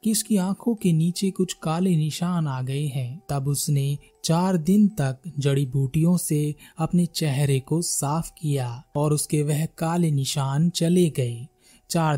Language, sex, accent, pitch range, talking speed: Hindi, male, native, 135-185 Hz, 155 wpm